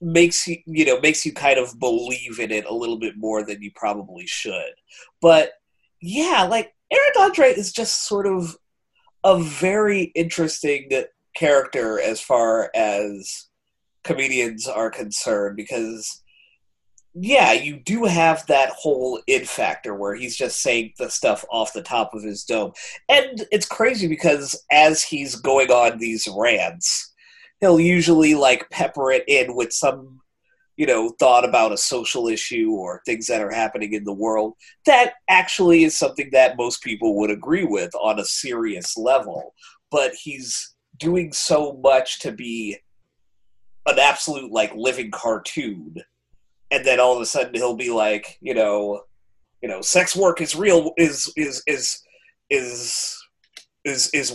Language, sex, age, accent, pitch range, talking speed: English, male, 30-49, American, 115-185 Hz, 155 wpm